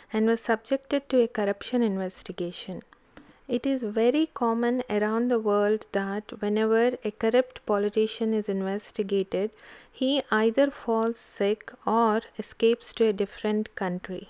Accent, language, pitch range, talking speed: native, Telugu, 205-245 Hz, 130 wpm